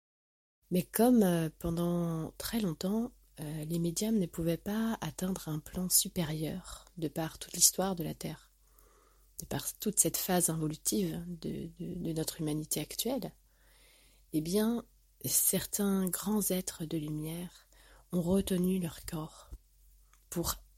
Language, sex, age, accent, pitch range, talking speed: French, female, 30-49, French, 160-185 Hz, 125 wpm